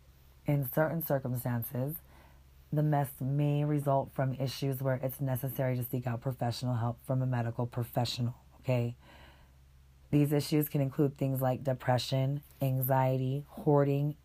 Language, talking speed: English, 130 wpm